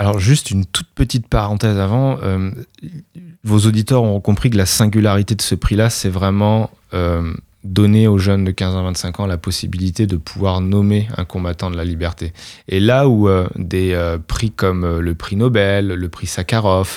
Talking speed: 185 wpm